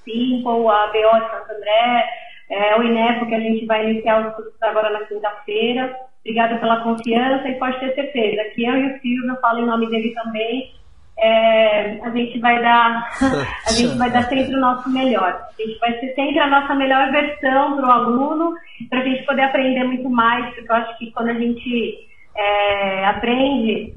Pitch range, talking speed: 225-265 Hz, 190 wpm